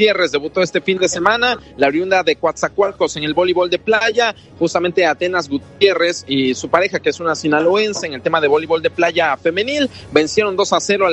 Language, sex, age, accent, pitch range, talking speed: Spanish, male, 30-49, Mexican, 165-215 Hz, 205 wpm